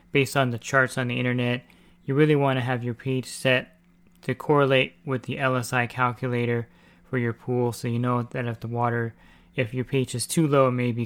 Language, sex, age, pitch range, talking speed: English, male, 20-39, 120-135 Hz, 215 wpm